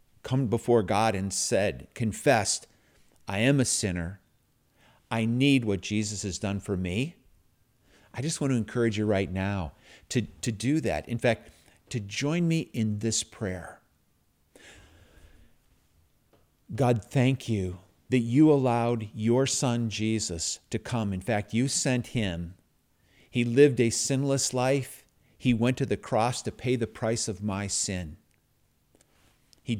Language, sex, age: English, male, 50-69